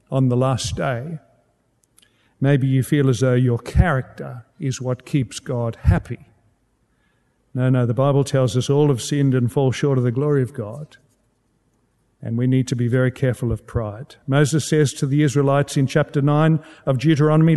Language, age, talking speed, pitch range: English, 50-69, 180 wpm, 125-160 Hz